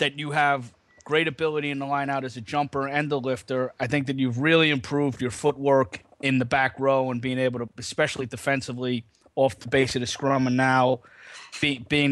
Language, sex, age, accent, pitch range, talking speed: English, male, 30-49, American, 125-145 Hz, 210 wpm